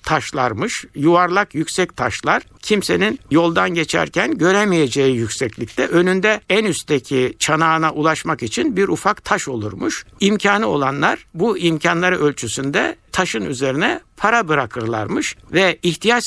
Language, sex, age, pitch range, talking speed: Turkish, male, 60-79, 130-175 Hz, 110 wpm